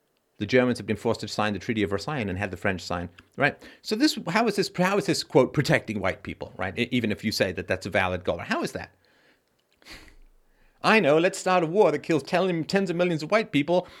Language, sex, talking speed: English, male, 235 wpm